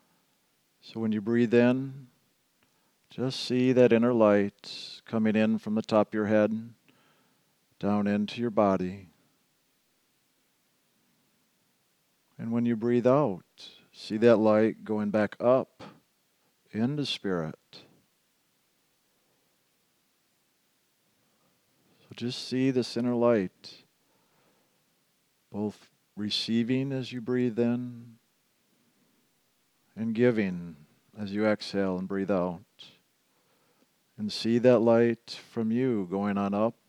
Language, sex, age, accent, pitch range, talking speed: English, male, 50-69, American, 105-120 Hz, 105 wpm